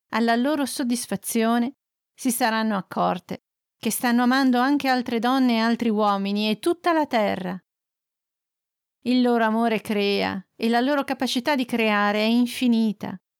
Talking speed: 140 wpm